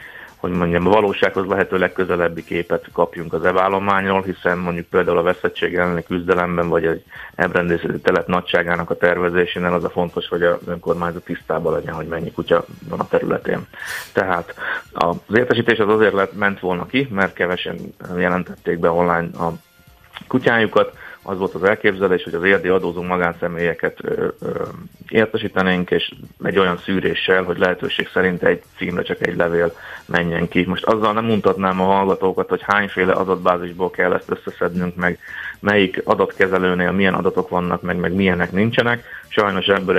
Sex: male